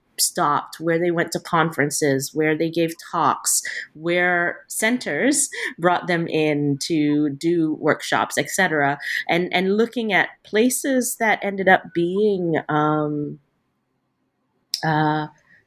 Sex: female